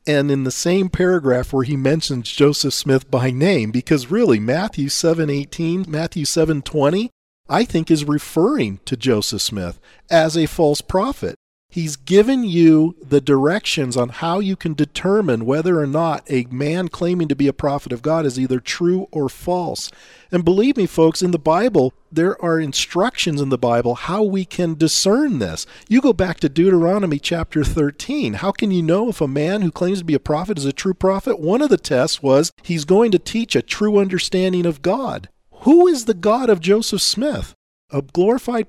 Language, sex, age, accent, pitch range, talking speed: English, male, 40-59, American, 145-195 Hz, 190 wpm